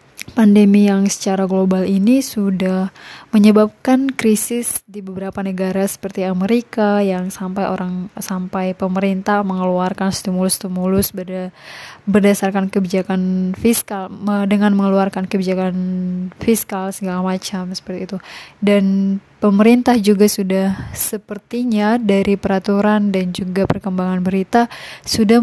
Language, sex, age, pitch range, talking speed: Indonesian, female, 20-39, 190-215 Hz, 100 wpm